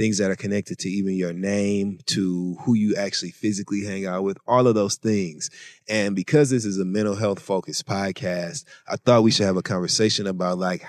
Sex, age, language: male, 30-49, English